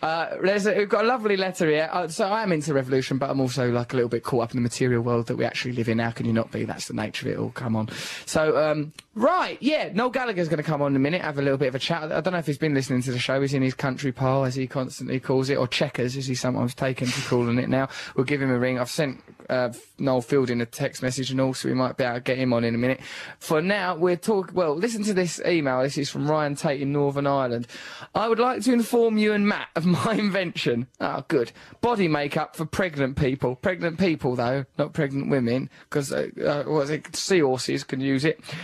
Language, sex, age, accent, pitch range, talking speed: English, male, 20-39, British, 130-170 Hz, 265 wpm